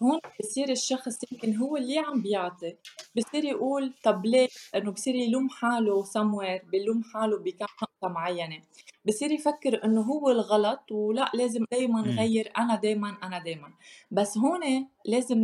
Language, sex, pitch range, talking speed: Arabic, female, 200-250 Hz, 145 wpm